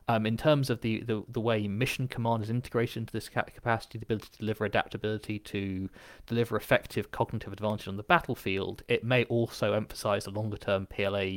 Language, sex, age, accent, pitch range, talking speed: English, male, 20-39, British, 100-120 Hz, 185 wpm